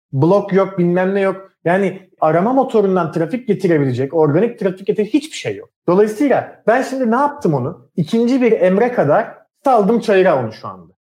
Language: Turkish